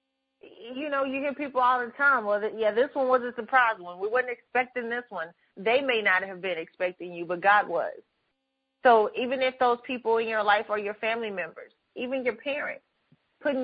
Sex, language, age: female, English, 30-49